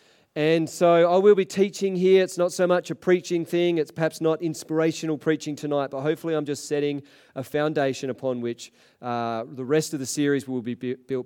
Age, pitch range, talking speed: 40-59, 125-170 Hz, 205 wpm